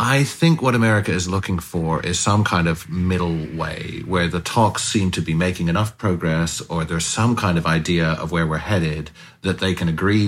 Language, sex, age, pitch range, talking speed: English, male, 40-59, 80-95 Hz, 210 wpm